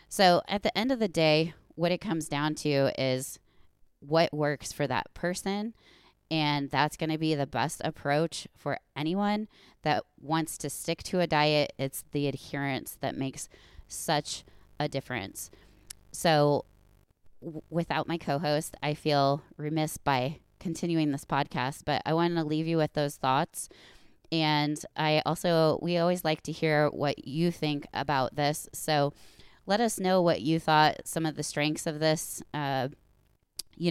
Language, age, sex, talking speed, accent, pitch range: English, 20-39, female, 165 wpm, American, 145-165 Hz